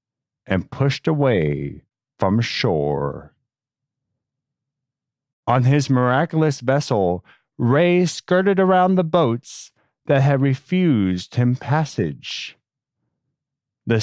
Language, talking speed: English, 85 wpm